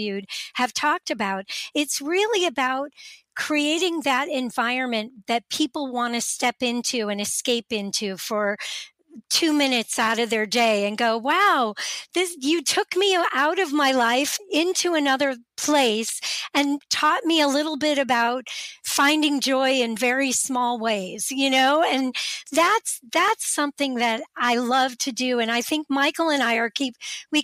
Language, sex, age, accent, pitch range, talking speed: English, female, 50-69, American, 240-305 Hz, 155 wpm